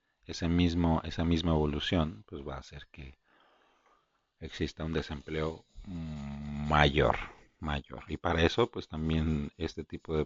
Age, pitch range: 40-59, 75-90 Hz